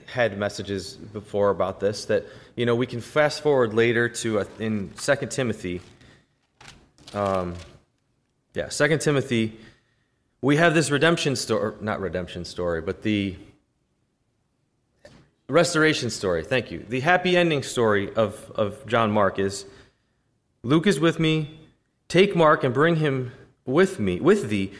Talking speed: 140 wpm